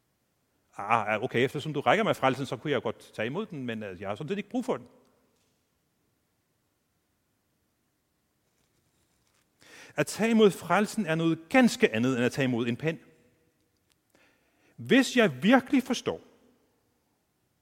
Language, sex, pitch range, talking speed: Danish, male, 130-200 Hz, 140 wpm